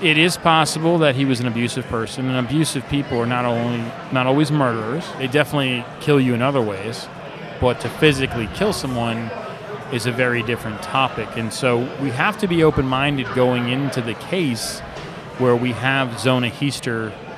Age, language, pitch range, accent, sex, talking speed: 30-49, English, 120-155 Hz, American, male, 175 wpm